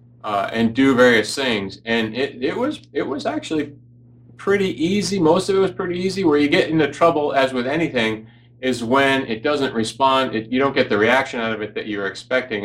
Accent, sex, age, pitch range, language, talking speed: American, male, 30-49, 110-130 Hz, English, 215 wpm